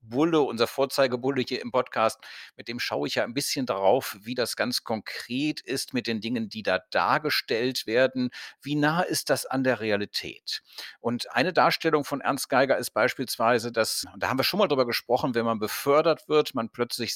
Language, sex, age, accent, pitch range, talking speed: German, male, 50-69, German, 120-145 Hz, 195 wpm